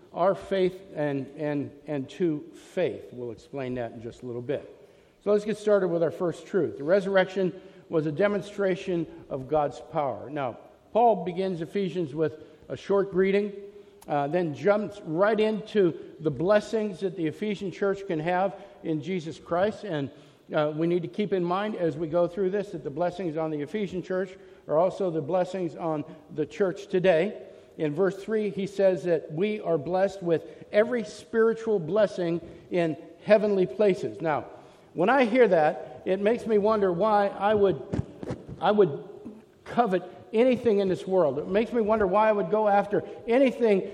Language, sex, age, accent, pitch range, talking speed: English, male, 50-69, American, 170-210 Hz, 170 wpm